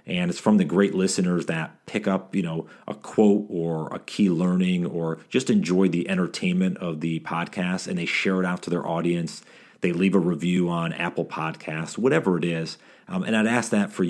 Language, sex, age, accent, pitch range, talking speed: English, male, 40-59, American, 80-95 Hz, 210 wpm